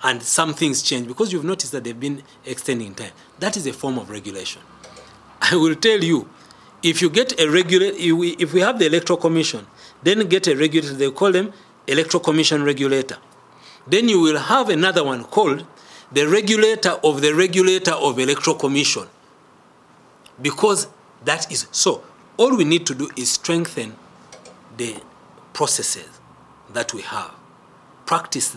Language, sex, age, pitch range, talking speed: English, male, 40-59, 130-175 Hz, 160 wpm